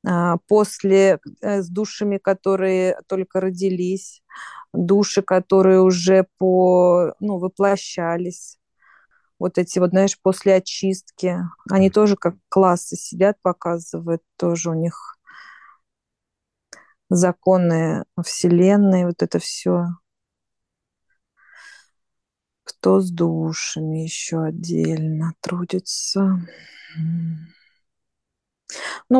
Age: 30-49